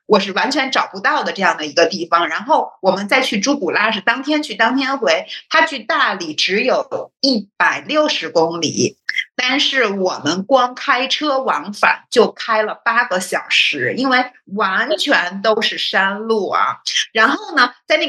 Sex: female